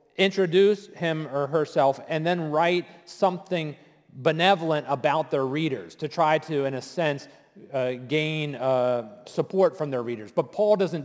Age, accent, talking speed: 40-59, American, 150 wpm